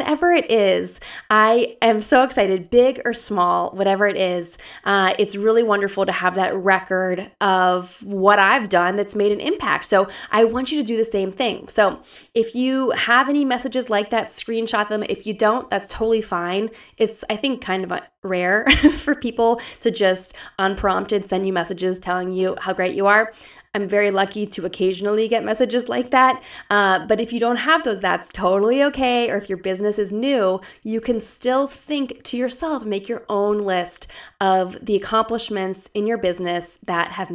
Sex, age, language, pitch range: female, 20-39, English, 190-235 Hz